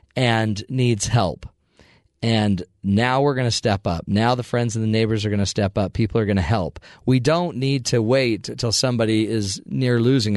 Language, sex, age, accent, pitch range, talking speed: English, male, 40-59, American, 105-140 Hz, 210 wpm